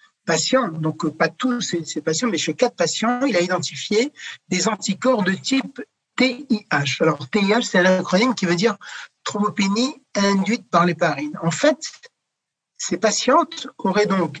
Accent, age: French, 60-79